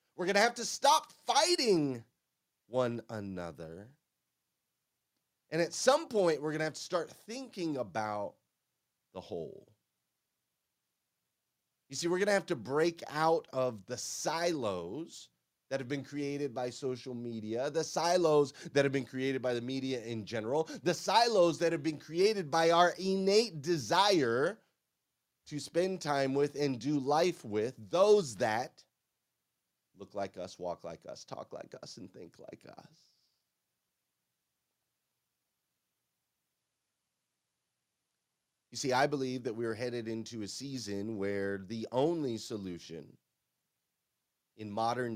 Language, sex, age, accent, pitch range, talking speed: English, male, 30-49, American, 105-160 Hz, 135 wpm